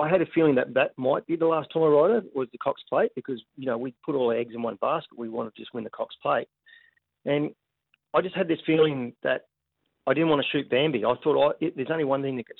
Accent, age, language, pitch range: Australian, 40-59, English, 115-145 Hz